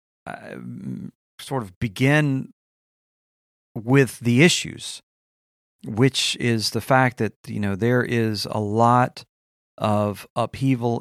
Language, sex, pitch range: English, male, 100-125 Hz